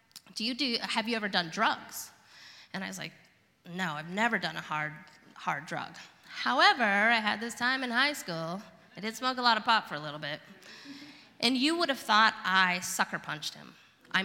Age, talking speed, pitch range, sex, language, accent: 20-39, 205 wpm, 190-255 Hz, female, English, American